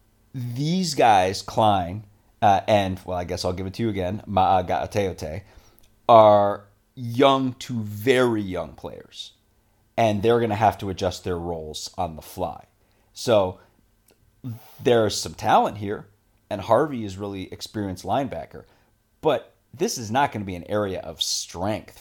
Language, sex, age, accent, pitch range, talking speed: English, male, 30-49, American, 95-120 Hz, 145 wpm